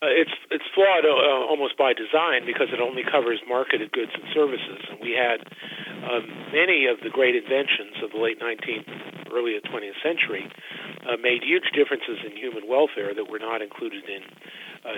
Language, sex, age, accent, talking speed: English, male, 50-69, American, 185 wpm